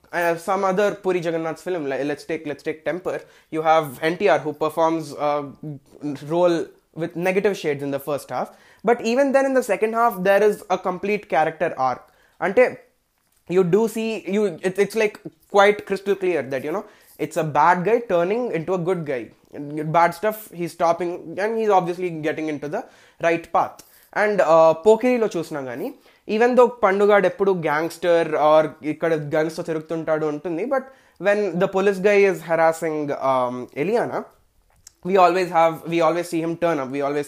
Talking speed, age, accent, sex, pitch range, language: 180 wpm, 20-39, native, male, 155-205 Hz, Telugu